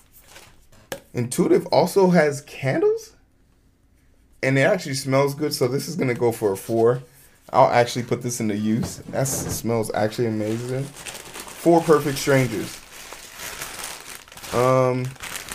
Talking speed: 120 wpm